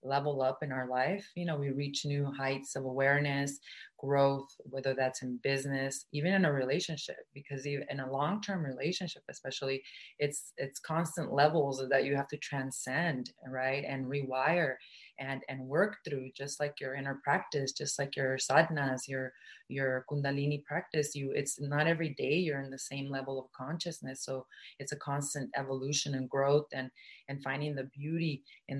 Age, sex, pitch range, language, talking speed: 30-49, female, 135-150 Hz, English, 175 wpm